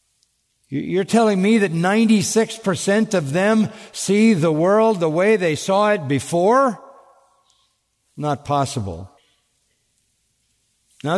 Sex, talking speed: male, 105 wpm